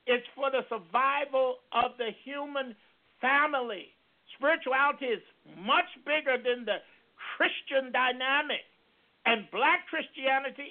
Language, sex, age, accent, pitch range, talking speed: English, male, 50-69, American, 250-295 Hz, 105 wpm